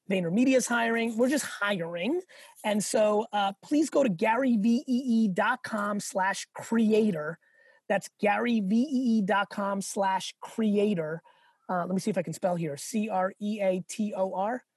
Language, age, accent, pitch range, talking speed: English, 30-49, American, 185-215 Hz, 120 wpm